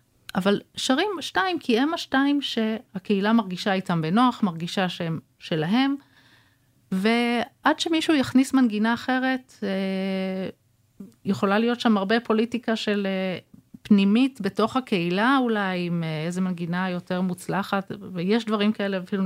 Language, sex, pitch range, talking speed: Hebrew, female, 170-225 Hz, 115 wpm